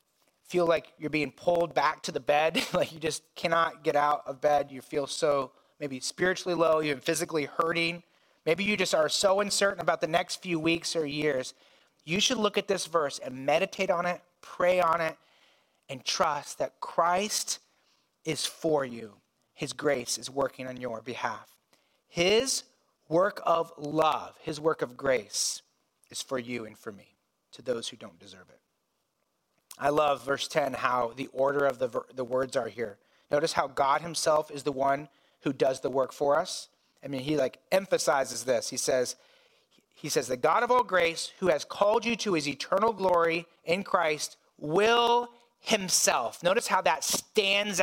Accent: American